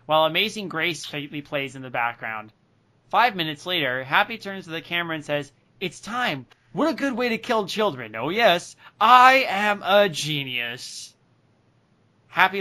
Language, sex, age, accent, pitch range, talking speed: English, male, 30-49, American, 145-180 Hz, 160 wpm